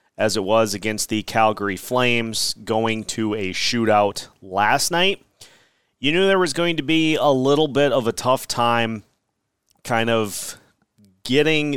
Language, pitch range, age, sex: English, 110-140 Hz, 30-49, male